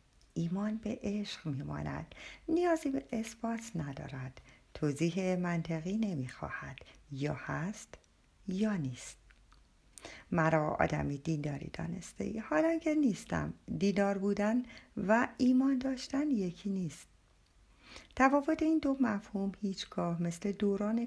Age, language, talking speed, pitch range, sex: 50-69, Persian, 105 wpm, 165-230 Hz, female